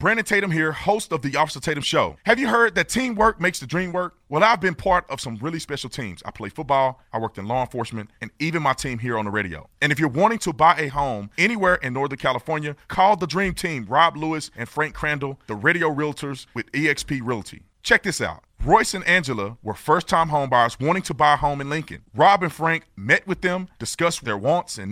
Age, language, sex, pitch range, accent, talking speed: 30-49, English, male, 130-180 Hz, American, 230 wpm